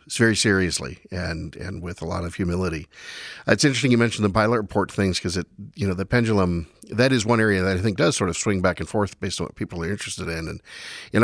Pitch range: 85-105 Hz